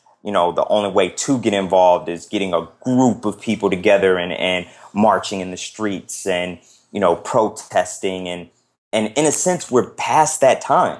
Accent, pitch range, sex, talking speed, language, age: American, 90-110 Hz, male, 185 wpm, English, 20-39